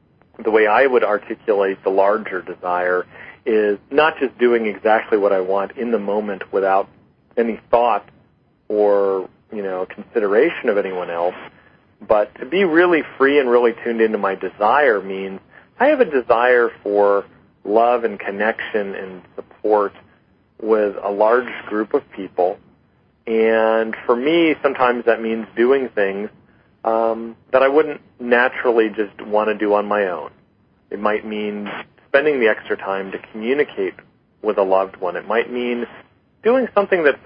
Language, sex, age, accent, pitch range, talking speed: English, male, 40-59, American, 95-120 Hz, 155 wpm